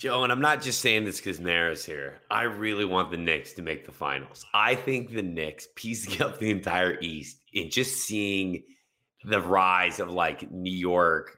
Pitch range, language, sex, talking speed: 95-130 Hz, English, male, 195 wpm